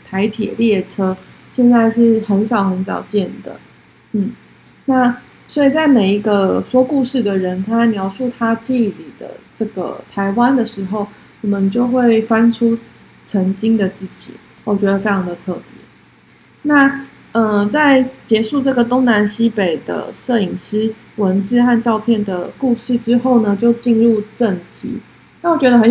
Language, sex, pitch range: Chinese, female, 200-245 Hz